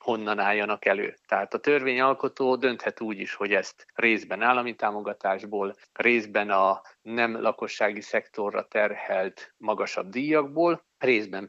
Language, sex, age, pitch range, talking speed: Hungarian, male, 50-69, 105-140 Hz, 120 wpm